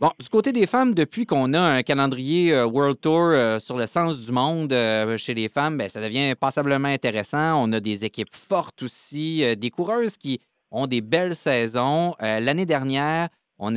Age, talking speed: 30-49, 195 wpm